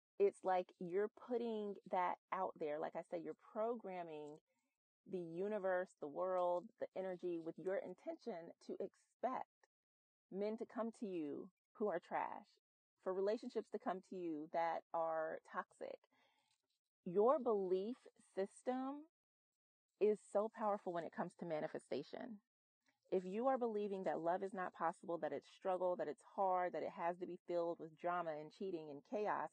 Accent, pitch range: American, 170-210 Hz